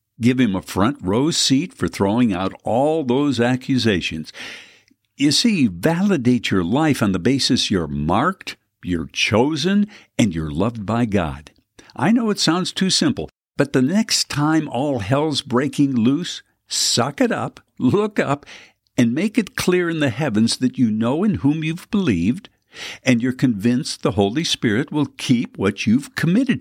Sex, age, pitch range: male, 60-79, 110-160 Hz